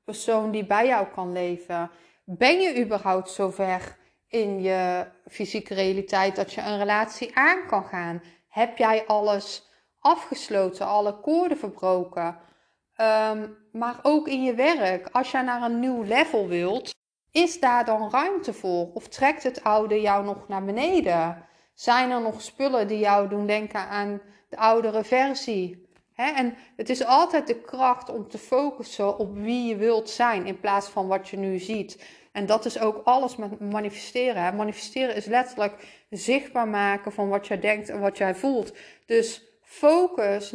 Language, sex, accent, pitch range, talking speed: Dutch, female, Dutch, 200-245 Hz, 165 wpm